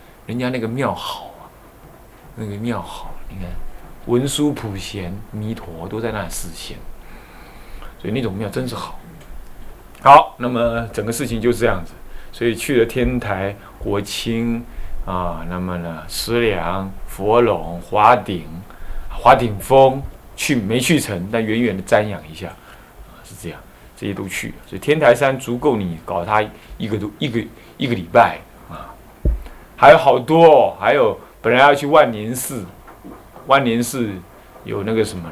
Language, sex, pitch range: Chinese, male, 85-120 Hz